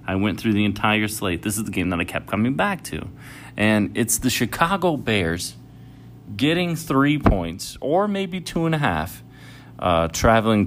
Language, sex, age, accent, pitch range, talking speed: English, male, 30-49, American, 90-120 Hz, 180 wpm